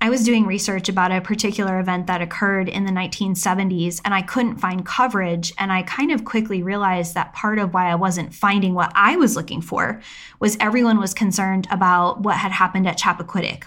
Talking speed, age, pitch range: 200 wpm, 10-29, 185-210 Hz